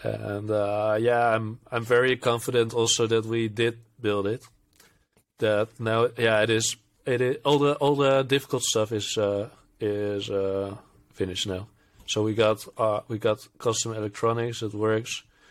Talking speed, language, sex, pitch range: 165 wpm, English, male, 110-125 Hz